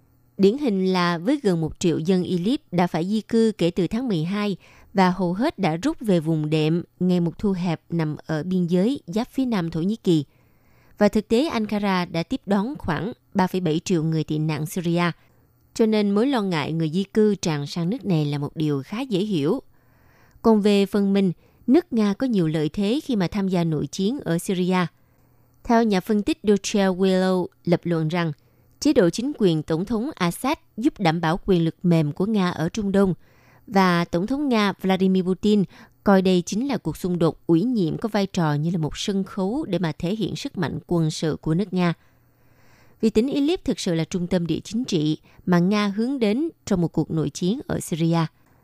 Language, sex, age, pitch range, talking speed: Vietnamese, female, 20-39, 160-210 Hz, 210 wpm